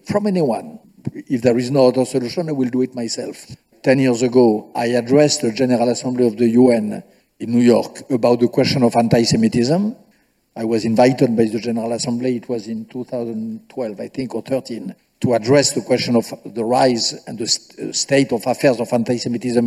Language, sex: English, male